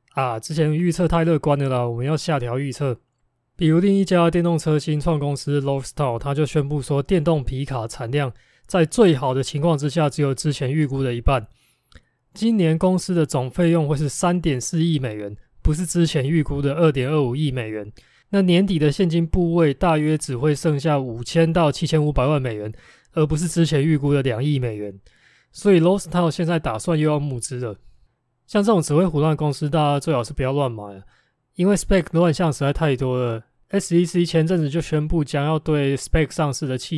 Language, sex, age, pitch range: Chinese, male, 20-39, 130-165 Hz